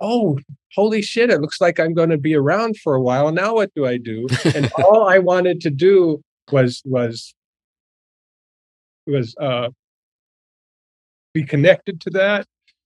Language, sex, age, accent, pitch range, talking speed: English, male, 50-69, American, 105-140 Hz, 155 wpm